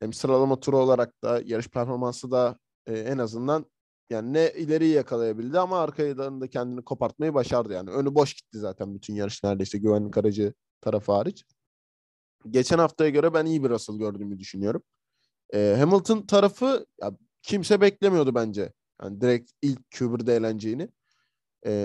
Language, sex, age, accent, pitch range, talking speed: Turkish, male, 20-39, native, 110-140 Hz, 150 wpm